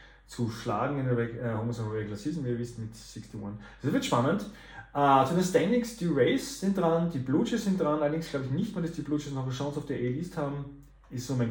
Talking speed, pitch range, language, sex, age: 245 wpm, 120-160 Hz, German, male, 30-49